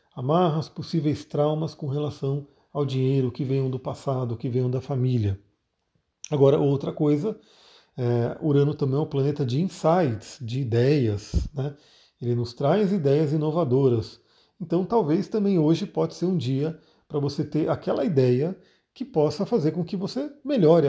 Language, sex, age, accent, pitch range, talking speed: Portuguese, male, 40-59, Brazilian, 135-165 Hz, 160 wpm